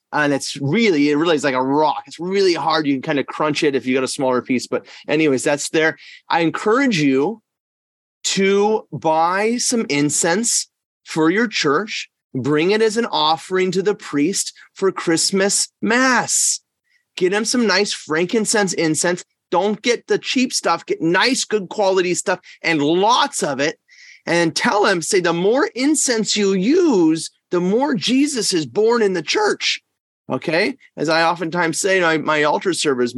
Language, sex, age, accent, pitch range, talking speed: English, male, 30-49, American, 155-220 Hz, 170 wpm